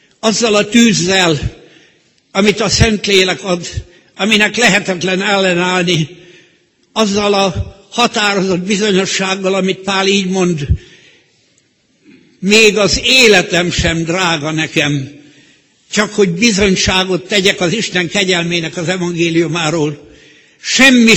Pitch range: 175-210 Hz